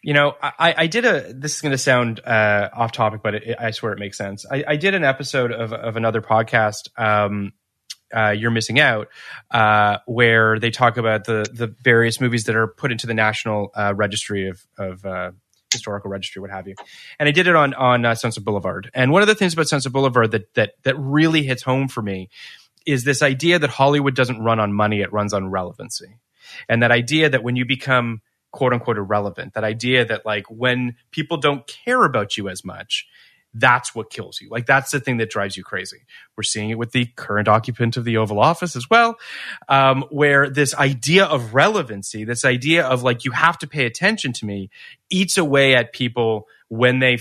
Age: 20-39